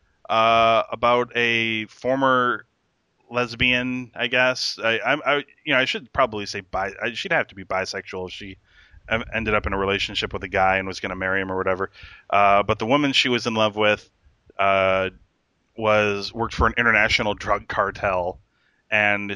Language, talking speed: English, 185 wpm